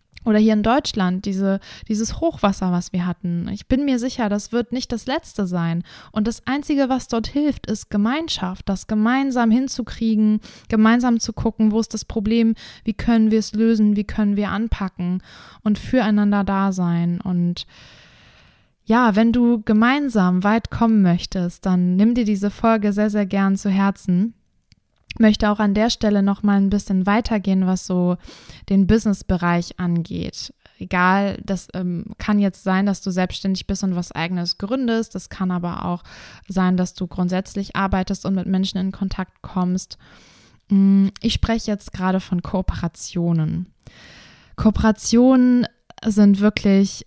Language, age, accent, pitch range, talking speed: German, 20-39, German, 185-220 Hz, 155 wpm